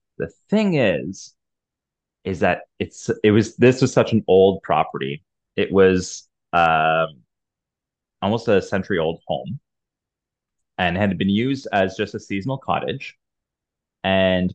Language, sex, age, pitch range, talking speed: English, male, 30-49, 90-110 Hz, 130 wpm